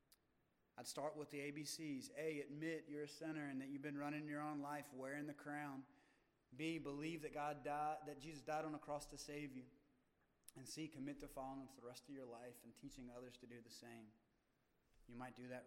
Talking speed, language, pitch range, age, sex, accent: 220 wpm, English, 125-150 Hz, 20-39, male, American